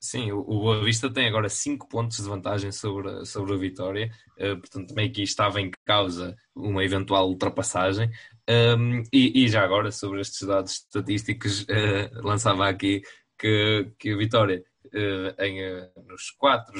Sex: male